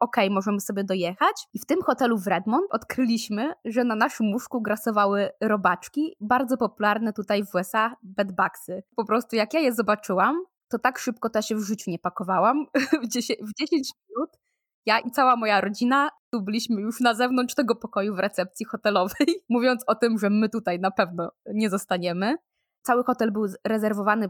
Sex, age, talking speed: female, 20-39, 180 wpm